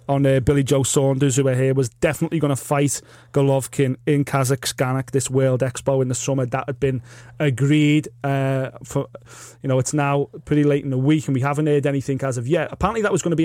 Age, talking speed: 30-49, 230 wpm